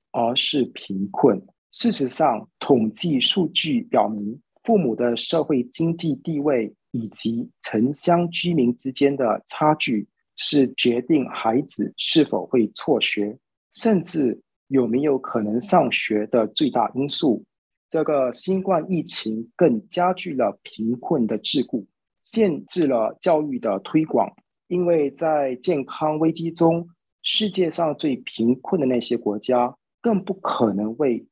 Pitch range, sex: 120-175 Hz, male